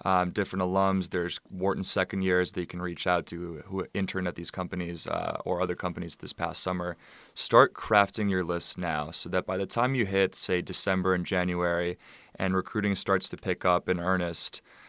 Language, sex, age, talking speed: English, male, 20-39, 200 wpm